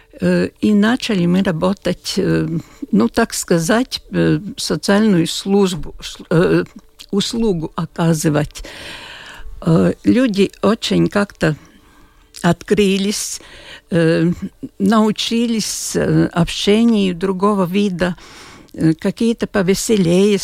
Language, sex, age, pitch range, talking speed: Russian, female, 60-79, 165-210 Hz, 60 wpm